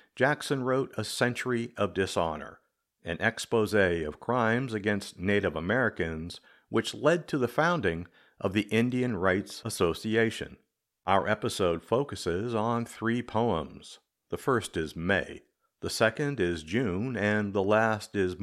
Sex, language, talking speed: male, English, 135 wpm